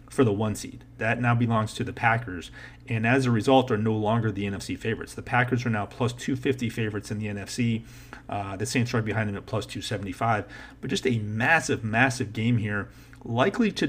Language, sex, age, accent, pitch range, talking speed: English, male, 40-59, American, 105-130 Hz, 205 wpm